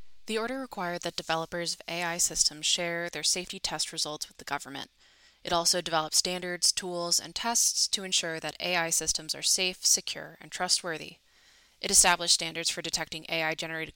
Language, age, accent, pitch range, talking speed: English, 20-39, American, 155-180 Hz, 170 wpm